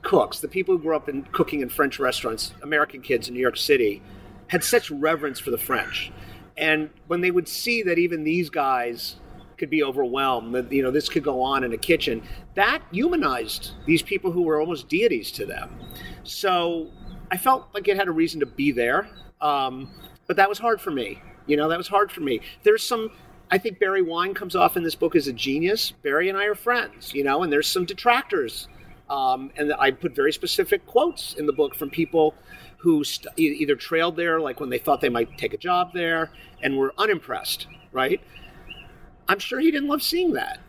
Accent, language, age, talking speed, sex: American, English, 50-69, 210 wpm, male